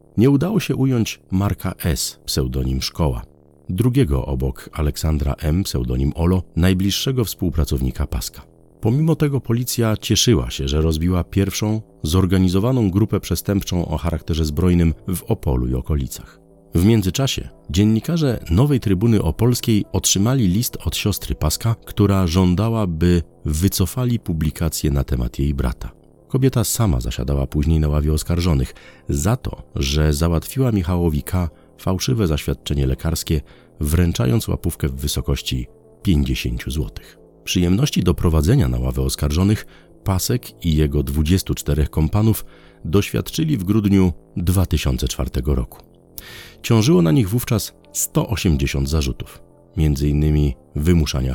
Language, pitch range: Polish, 75-105 Hz